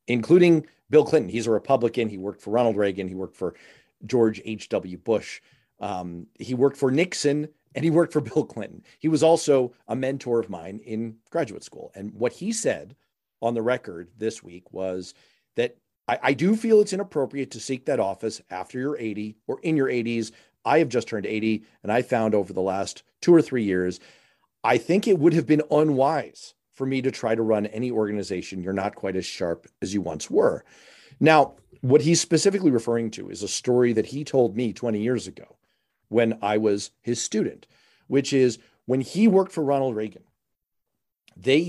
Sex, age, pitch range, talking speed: male, 40-59, 110-145 Hz, 195 wpm